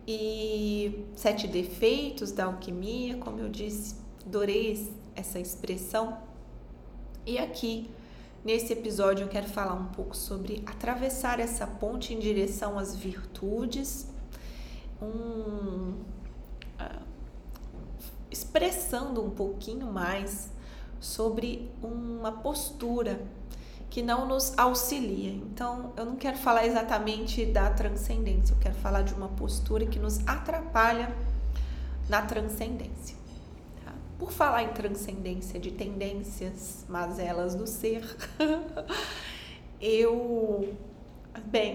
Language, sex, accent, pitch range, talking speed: Portuguese, female, Brazilian, 195-230 Hz, 100 wpm